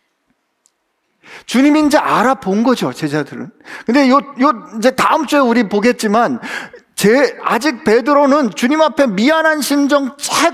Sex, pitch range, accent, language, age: male, 225-305 Hz, native, Korean, 40-59